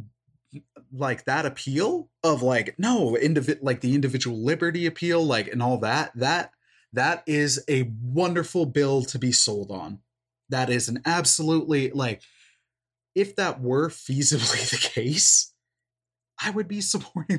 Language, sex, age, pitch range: English, male, 20-39, 125-170 Hz